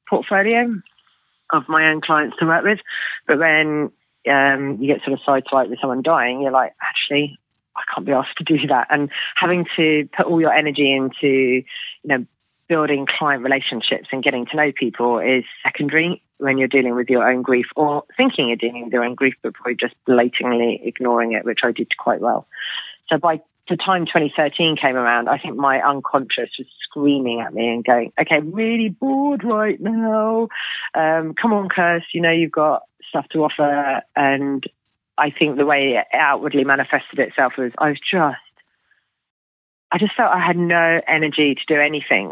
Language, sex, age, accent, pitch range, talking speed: English, female, 30-49, British, 130-165 Hz, 190 wpm